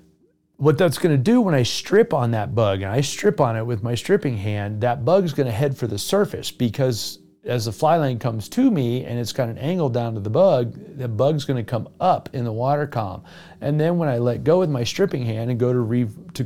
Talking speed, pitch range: 245 wpm, 110-140 Hz